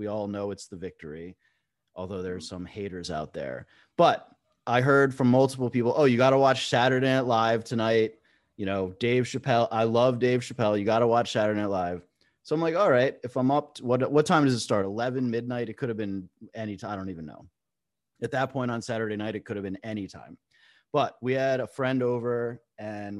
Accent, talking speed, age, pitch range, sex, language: American, 225 wpm, 30-49, 105-130 Hz, male, English